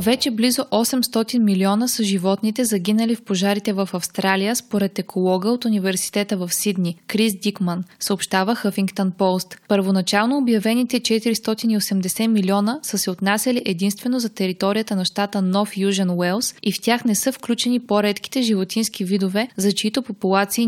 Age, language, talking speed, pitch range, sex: 20-39, Bulgarian, 140 wpm, 195-230 Hz, female